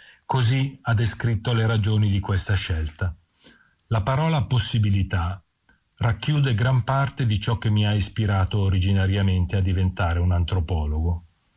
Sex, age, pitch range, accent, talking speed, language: male, 40-59, 95-120 Hz, native, 130 wpm, Italian